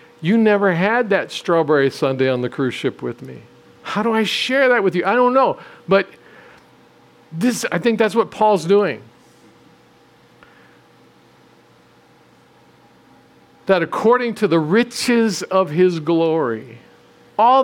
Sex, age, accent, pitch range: male, 50-69, American, 170-220 Hz